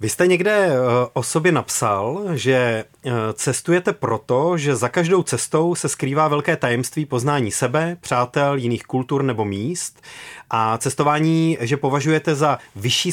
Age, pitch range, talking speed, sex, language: 30-49, 110-145 Hz, 135 wpm, male, Czech